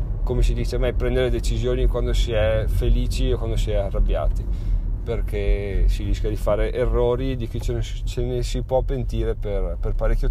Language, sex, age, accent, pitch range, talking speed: Italian, male, 30-49, native, 100-125 Hz, 200 wpm